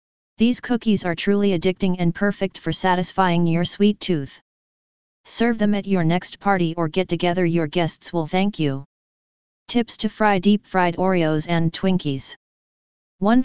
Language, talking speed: English, 150 wpm